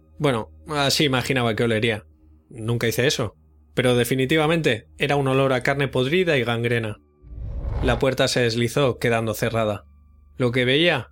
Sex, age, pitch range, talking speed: male, 20-39, 100-130 Hz, 145 wpm